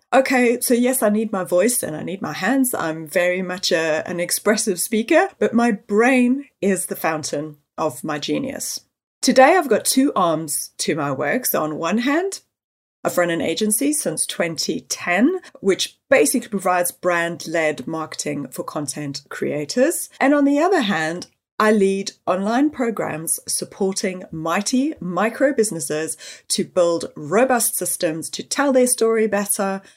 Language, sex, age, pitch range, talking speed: English, female, 30-49, 165-245 Hz, 150 wpm